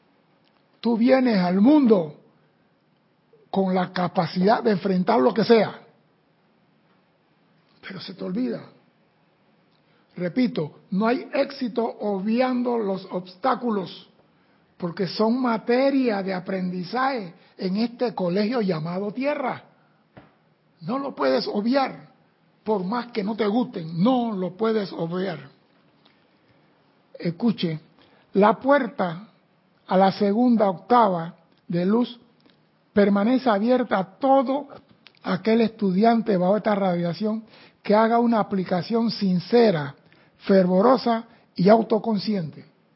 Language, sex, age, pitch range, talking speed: Spanish, male, 60-79, 180-230 Hz, 100 wpm